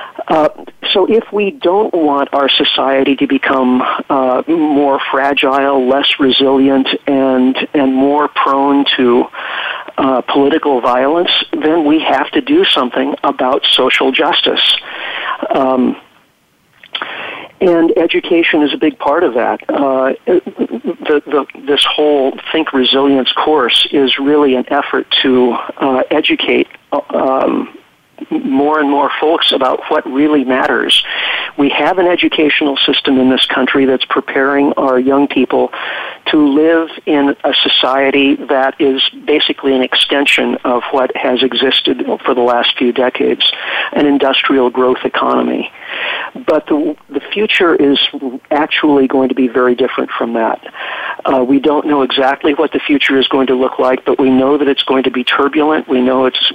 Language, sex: English, male